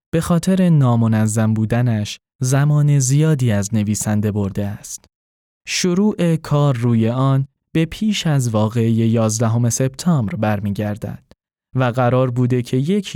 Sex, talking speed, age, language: male, 120 wpm, 10-29, Persian